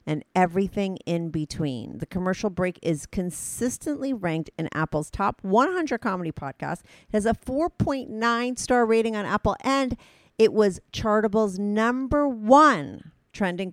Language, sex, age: English, female, 40-59